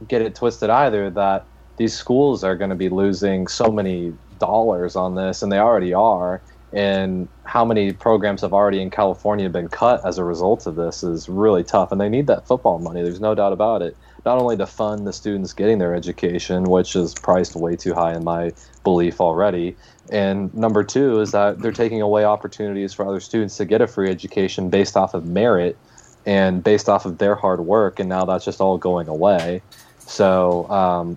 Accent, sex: American, male